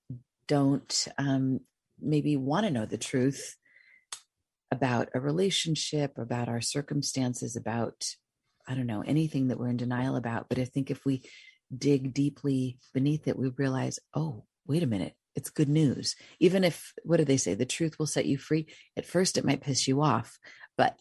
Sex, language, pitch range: female, English, 135-180 Hz